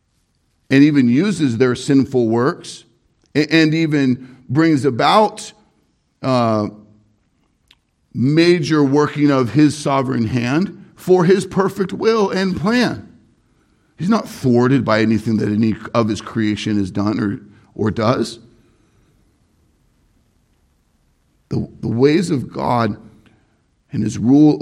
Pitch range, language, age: 105-140 Hz, English, 50-69